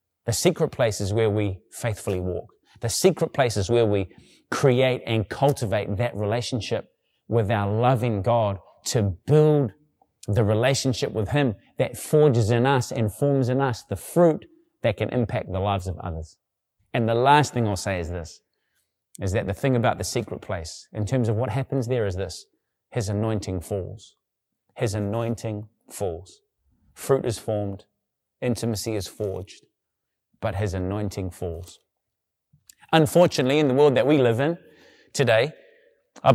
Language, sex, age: English, male, 30-49